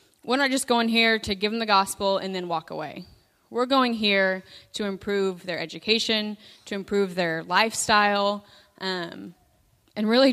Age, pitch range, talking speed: 20-39, 180-220 Hz, 165 wpm